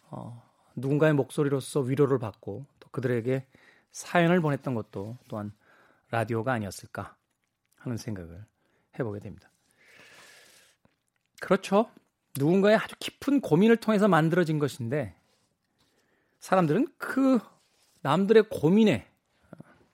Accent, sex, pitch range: native, male, 130-215 Hz